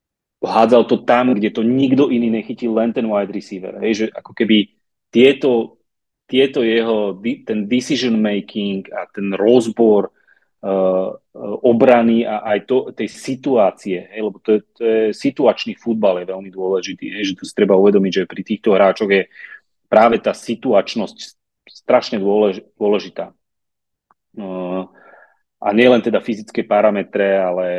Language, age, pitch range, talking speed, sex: Slovak, 30-49, 95-115 Hz, 145 wpm, male